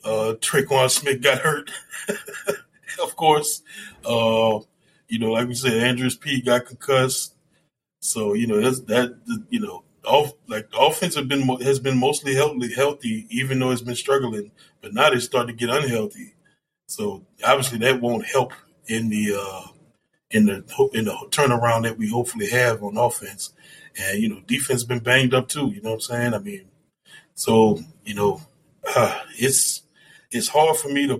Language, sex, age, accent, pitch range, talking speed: English, male, 20-39, American, 115-145 Hz, 175 wpm